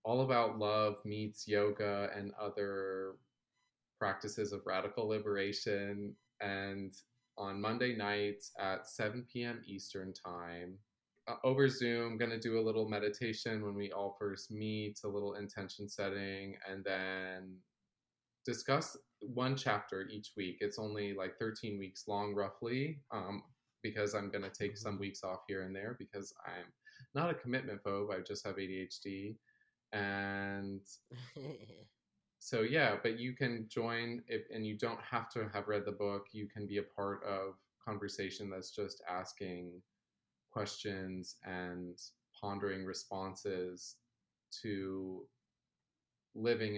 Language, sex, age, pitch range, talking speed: English, male, 20-39, 95-110 Hz, 140 wpm